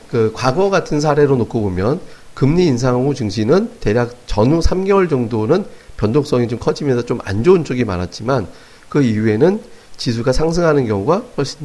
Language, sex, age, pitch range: Korean, male, 40-59, 105-140 Hz